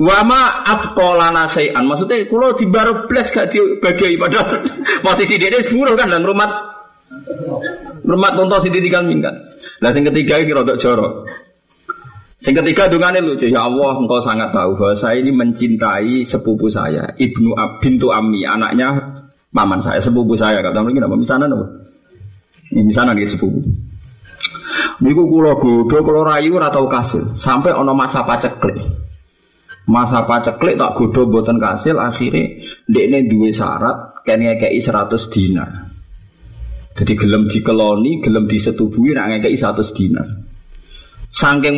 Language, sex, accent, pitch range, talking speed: Indonesian, male, native, 110-175 Hz, 140 wpm